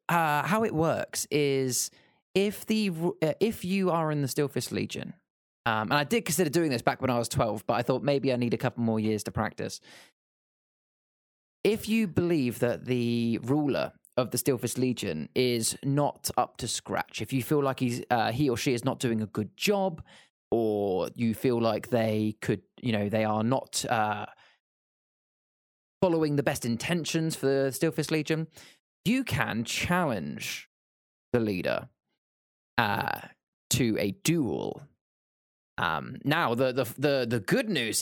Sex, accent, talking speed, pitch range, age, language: male, British, 170 wpm, 115-160 Hz, 20-39, English